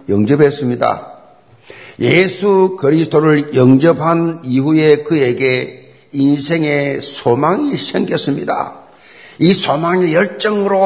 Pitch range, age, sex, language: 125-180 Hz, 50-69, male, Korean